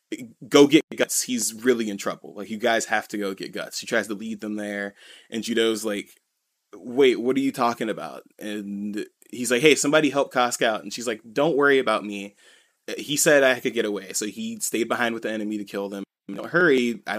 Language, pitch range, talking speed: English, 100-120 Hz, 225 wpm